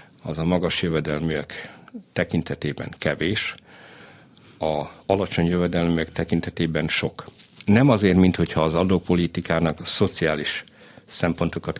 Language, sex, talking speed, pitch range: Hungarian, male, 95 wpm, 85-100 Hz